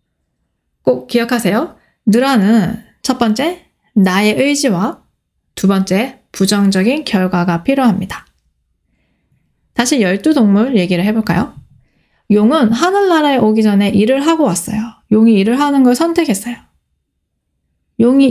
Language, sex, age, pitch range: Korean, female, 20-39, 195-265 Hz